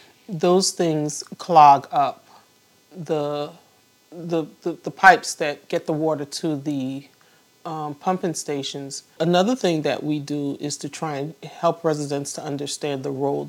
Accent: American